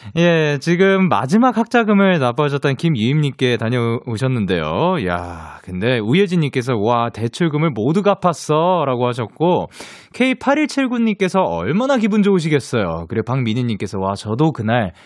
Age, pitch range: 20-39, 120-200 Hz